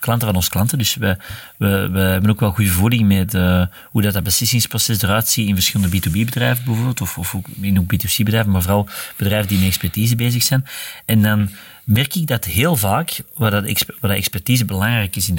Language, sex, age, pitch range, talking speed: Dutch, male, 40-59, 100-115 Hz, 200 wpm